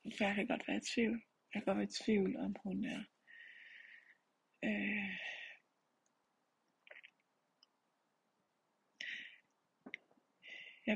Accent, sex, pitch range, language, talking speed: native, female, 195-235 Hz, Danish, 90 wpm